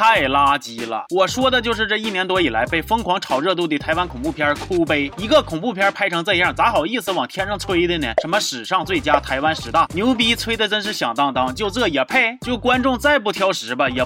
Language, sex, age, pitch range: Chinese, male, 20-39, 170-255 Hz